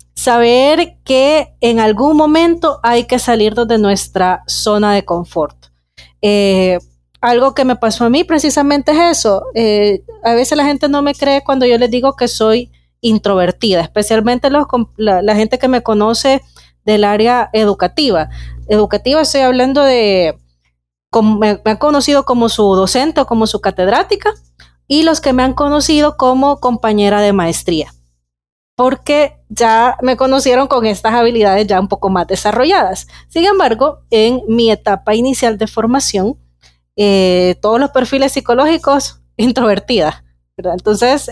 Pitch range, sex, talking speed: 195-265 Hz, female, 150 wpm